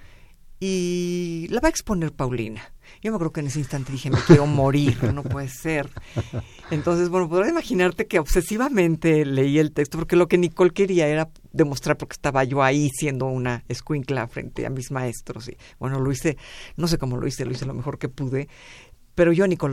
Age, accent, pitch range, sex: 50-69, Mexican, 135-170 Hz, female